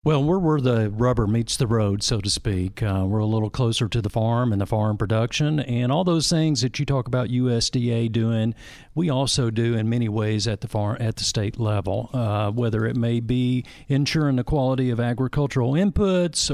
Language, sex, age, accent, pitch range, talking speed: English, male, 50-69, American, 115-140 Hz, 205 wpm